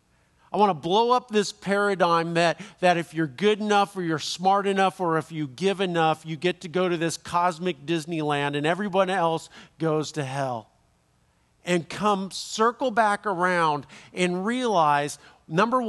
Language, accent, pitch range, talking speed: English, American, 150-200 Hz, 165 wpm